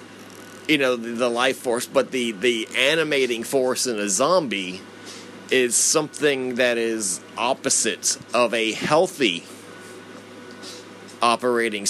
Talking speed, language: 110 wpm, English